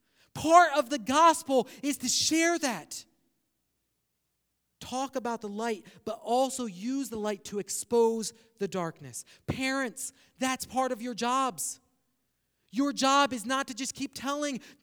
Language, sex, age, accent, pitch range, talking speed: English, male, 40-59, American, 180-275 Hz, 140 wpm